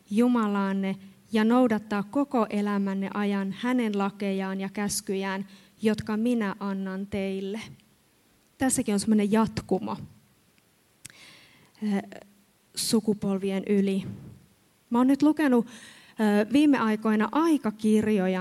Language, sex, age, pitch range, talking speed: Finnish, female, 30-49, 200-245 Hz, 90 wpm